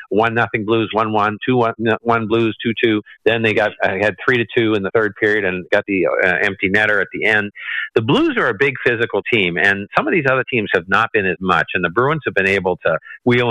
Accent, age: American, 50-69